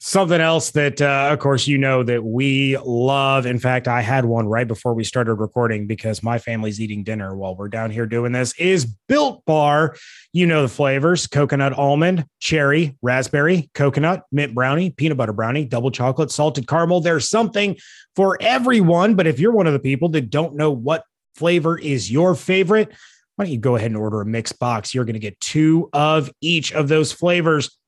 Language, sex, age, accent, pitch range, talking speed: English, male, 30-49, American, 125-165 Hz, 200 wpm